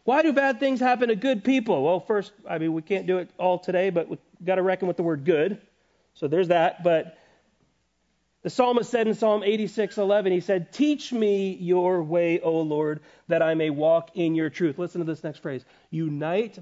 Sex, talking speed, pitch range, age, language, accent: male, 215 wpm, 150-240 Hz, 40-59, English, American